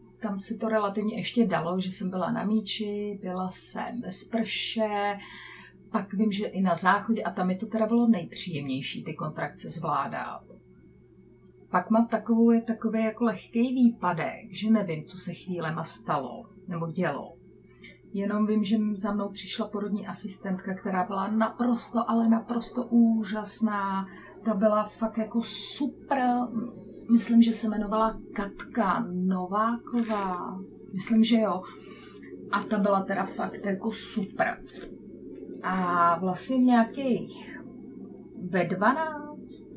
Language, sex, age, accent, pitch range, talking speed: Czech, female, 30-49, native, 195-230 Hz, 130 wpm